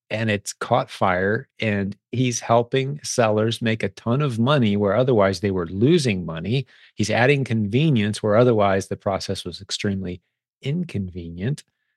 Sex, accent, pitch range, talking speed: male, American, 95-120 Hz, 145 wpm